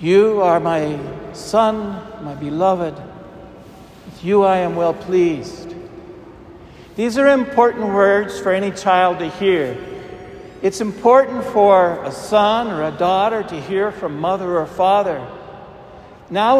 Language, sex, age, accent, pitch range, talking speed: English, male, 60-79, American, 165-220 Hz, 130 wpm